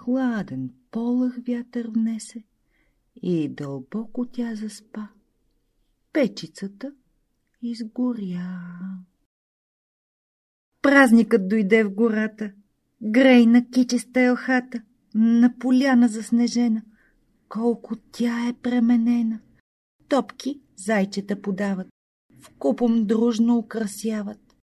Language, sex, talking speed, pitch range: Bulgarian, female, 75 wpm, 215-255 Hz